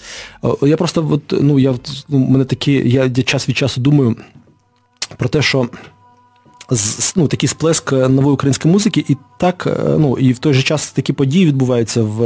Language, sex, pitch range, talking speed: English, male, 110-140 Hz, 165 wpm